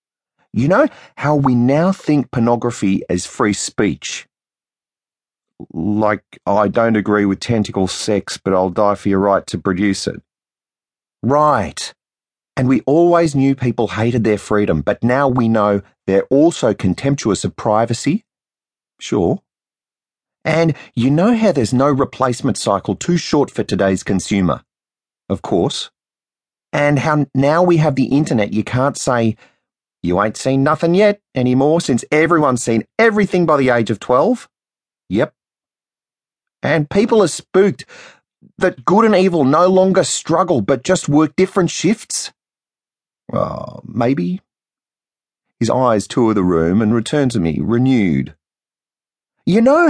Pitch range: 105-165 Hz